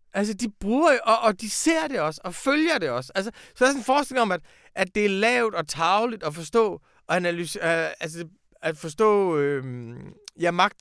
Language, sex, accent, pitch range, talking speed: Danish, male, native, 165-230 Hz, 215 wpm